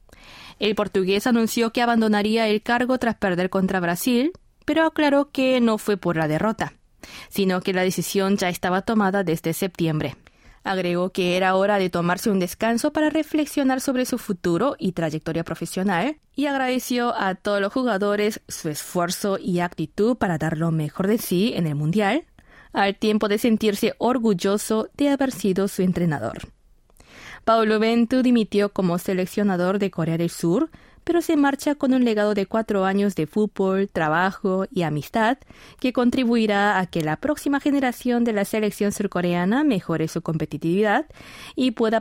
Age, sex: 20-39, female